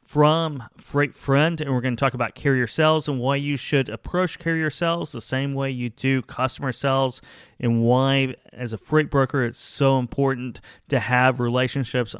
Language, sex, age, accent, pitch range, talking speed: English, male, 30-49, American, 130-165 Hz, 180 wpm